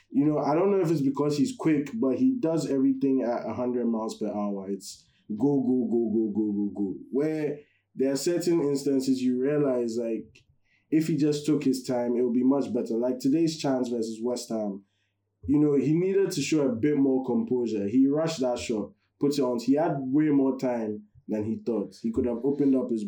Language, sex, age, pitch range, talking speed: English, male, 20-39, 115-150 Hz, 215 wpm